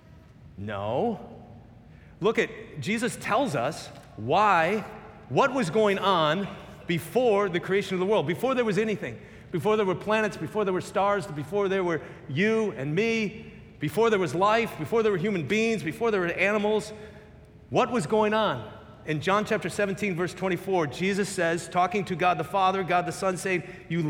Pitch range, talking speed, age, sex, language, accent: 170-215 Hz, 175 wpm, 40-59, male, English, American